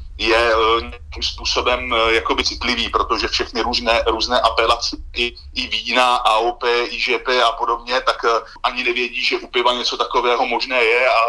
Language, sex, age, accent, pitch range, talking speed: Czech, male, 30-49, native, 115-130 Hz, 160 wpm